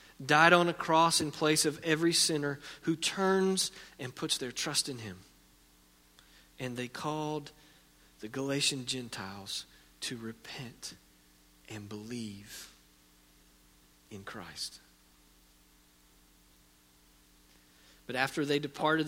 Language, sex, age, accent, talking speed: English, male, 40-59, American, 105 wpm